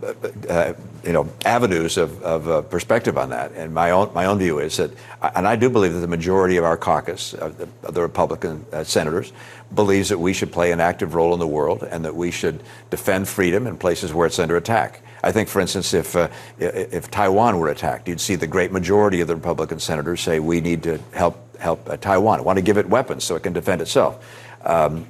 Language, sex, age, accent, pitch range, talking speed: English, male, 60-79, American, 90-110 Hz, 225 wpm